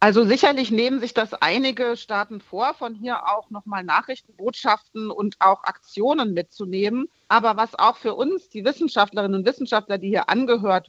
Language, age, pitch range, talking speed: German, 40-59, 195-240 Hz, 165 wpm